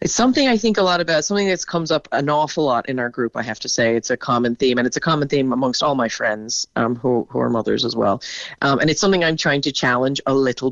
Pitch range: 135-170 Hz